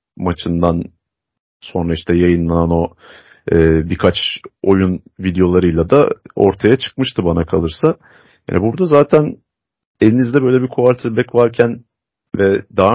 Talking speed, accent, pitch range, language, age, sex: 110 wpm, native, 90-115 Hz, Turkish, 40-59, male